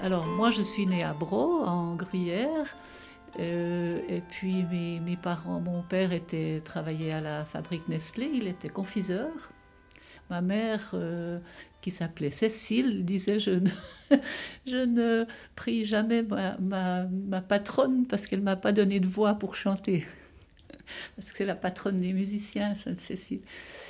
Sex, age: female, 60-79